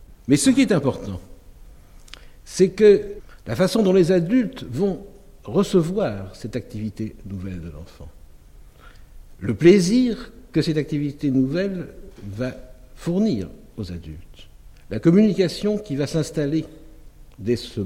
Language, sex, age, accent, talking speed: French, male, 60-79, French, 120 wpm